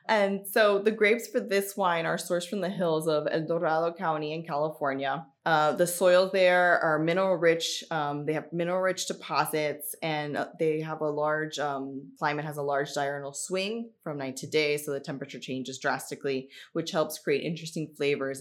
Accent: American